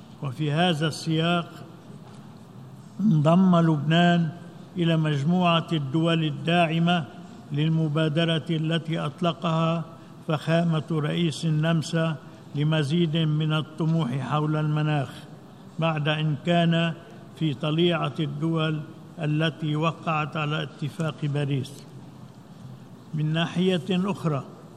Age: 60-79